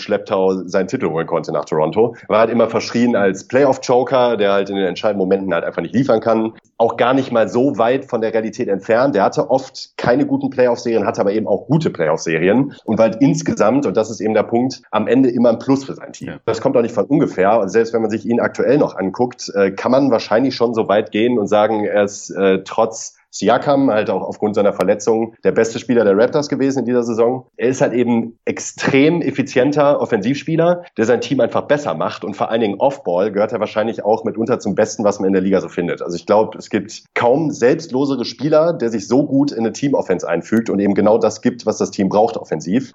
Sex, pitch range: male, 105-130 Hz